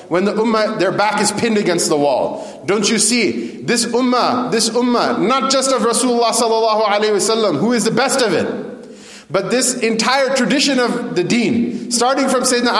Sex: male